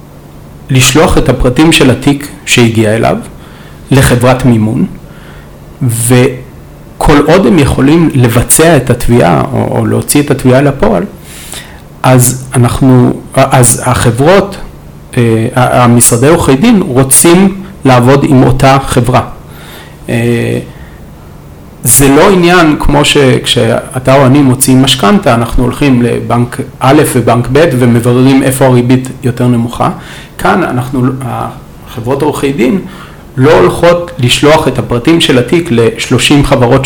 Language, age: Hebrew, 40-59